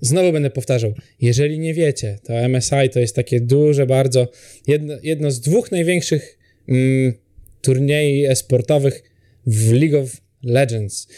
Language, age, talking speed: Polish, 20-39, 135 wpm